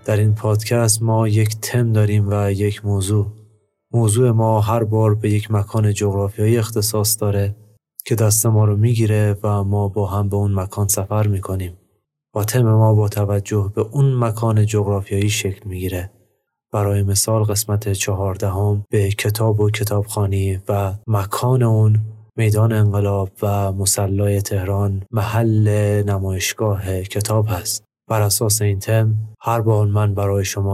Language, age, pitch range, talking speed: Persian, 20-39, 100-110 Hz, 145 wpm